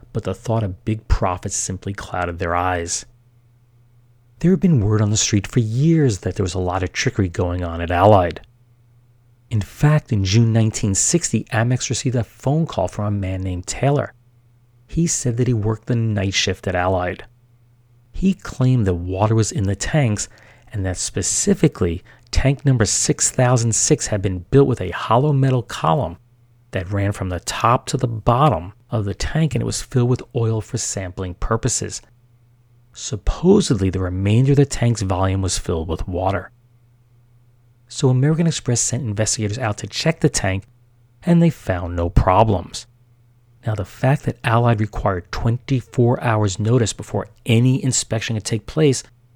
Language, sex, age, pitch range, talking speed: English, male, 40-59, 100-125 Hz, 170 wpm